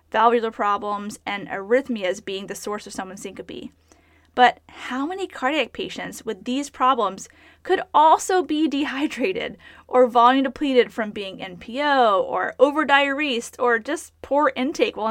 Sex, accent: female, American